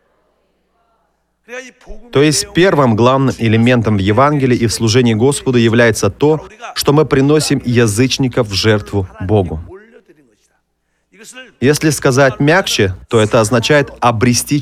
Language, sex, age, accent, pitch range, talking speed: Russian, male, 30-49, native, 115-155 Hz, 110 wpm